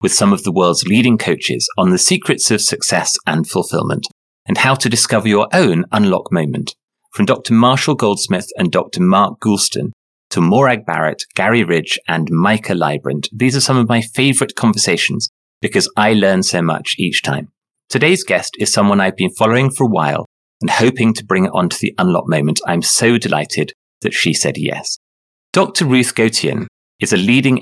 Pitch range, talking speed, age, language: 95-130 Hz, 185 wpm, 30-49, English